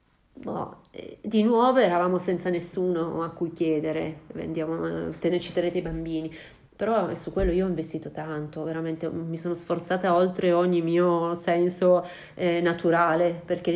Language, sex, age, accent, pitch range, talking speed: Italian, female, 30-49, native, 160-175 Hz, 130 wpm